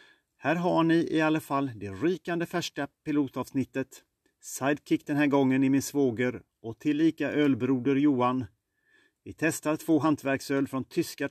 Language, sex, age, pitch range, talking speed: Swedish, male, 40-59, 130-155 Hz, 145 wpm